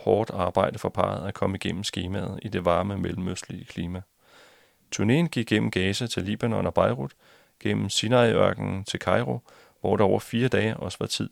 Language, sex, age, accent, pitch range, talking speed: Danish, male, 30-49, native, 95-110 Hz, 175 wpm